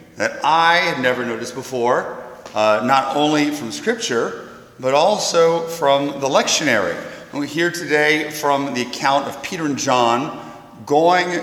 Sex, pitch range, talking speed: male, 125-160 Hz, 145 wpm